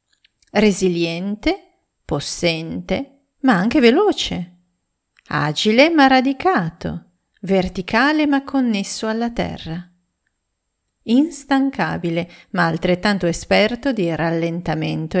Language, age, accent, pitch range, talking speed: Italian, 40-59, native, 170-240 Hz, 75 wpm